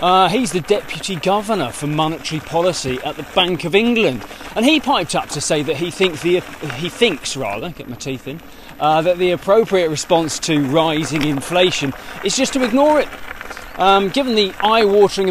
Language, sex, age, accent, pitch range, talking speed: English, male, 20-39, British, 150-195 Hz, 175 wpm